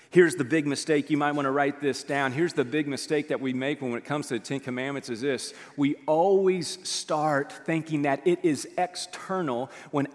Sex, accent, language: male, American, English